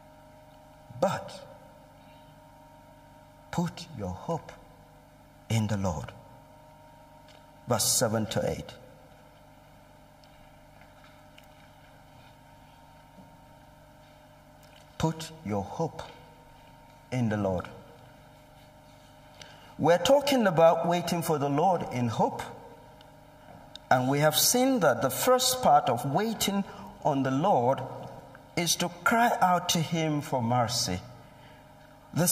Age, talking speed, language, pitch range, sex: 60-79, 90 wpm, English, 150-185 Hz, male